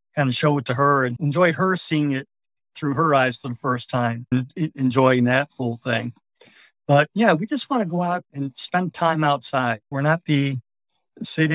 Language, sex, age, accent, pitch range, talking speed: English, male, 50-69, American, 120-140 Hz, 205 wpm